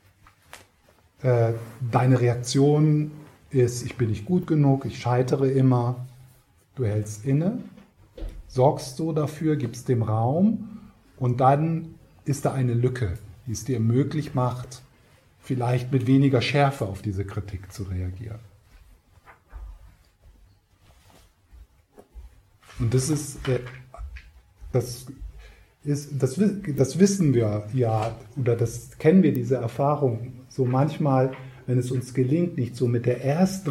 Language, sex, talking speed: German, male, 120 wpm